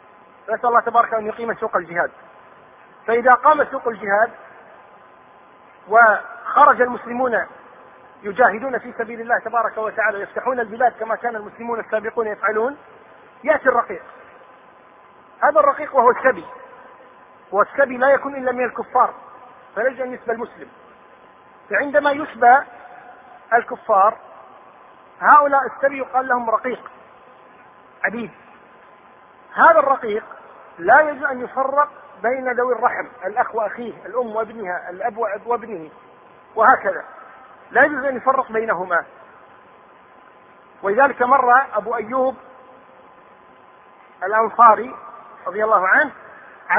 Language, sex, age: Arabic, male, 40-59